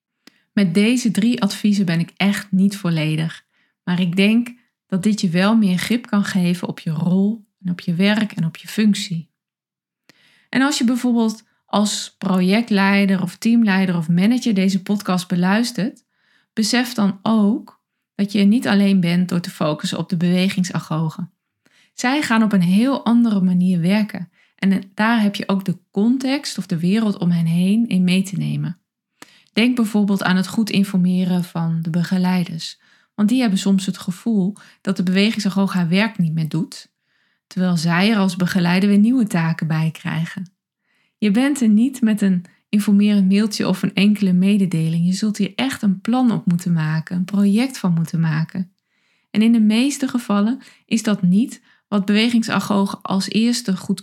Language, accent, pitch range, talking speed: Dutch, Dutch, 180-220 Hz, 170 wpm